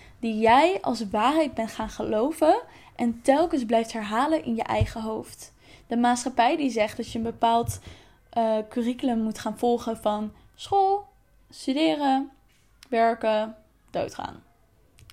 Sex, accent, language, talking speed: female, Dutch, Dutch, 130 wpm